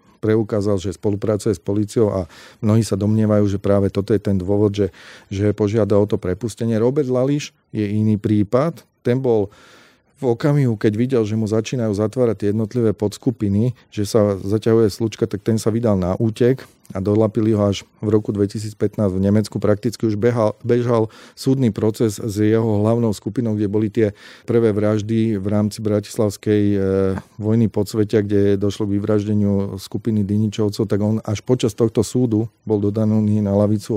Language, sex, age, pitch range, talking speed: Slovak, male, 40-59, 105-120 Hz, 165 wpm